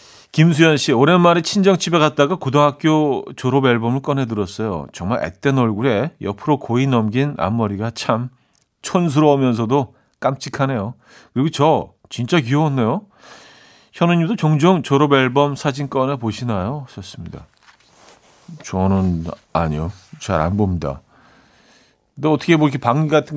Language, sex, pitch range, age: Korean, male, 110-145 Hz, 40-59